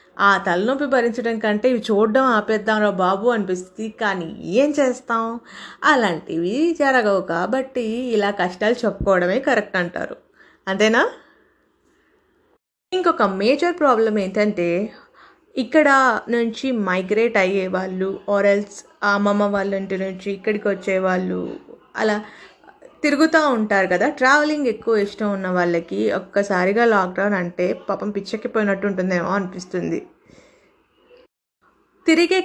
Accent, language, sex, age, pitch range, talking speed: native, Telugu, female, 20-39, 200-270 Hz, 100 wpm